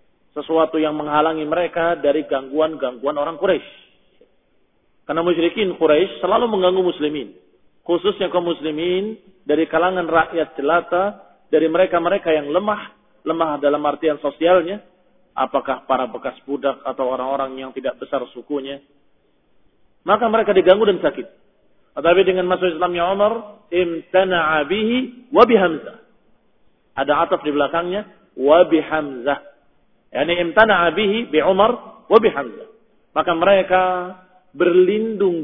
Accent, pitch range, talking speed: native, 150-190 Hz, 115 wpm